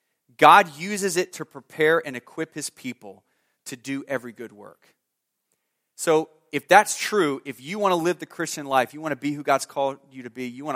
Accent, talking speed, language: American, 210 wpm, English